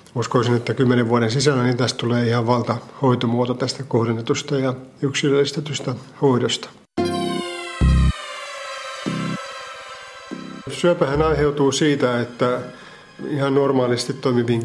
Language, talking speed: Finnish, 90 wpm